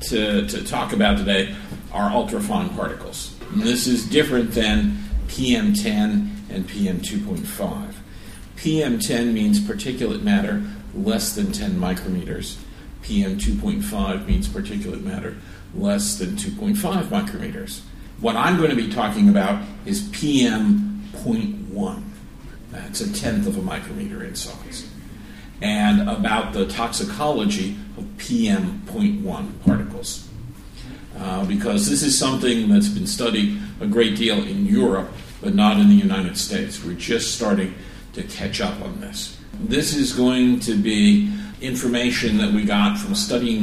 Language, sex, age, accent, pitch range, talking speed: English, male, 50-69, American, 140-210 Hz, 130 wpm